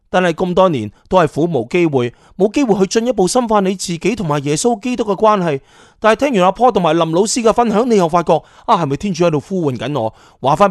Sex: male